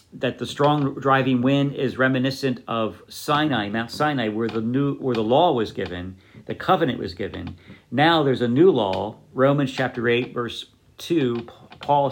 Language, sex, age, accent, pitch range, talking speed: English, male, 50-69, American, 115-140 Hz, 170 wpm